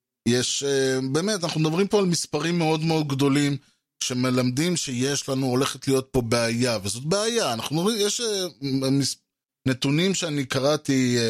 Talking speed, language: 135 wpm, Hebrew